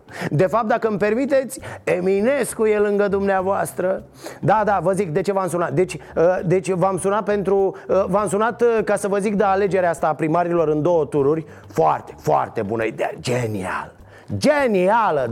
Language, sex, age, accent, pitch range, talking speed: Romanian, male, 30-49, native, 170-260 Hz, 175 wpm